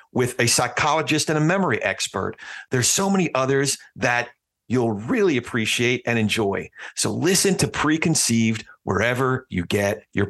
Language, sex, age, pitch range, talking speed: English, male, 40-59, 100-120 Hz, 145 wpm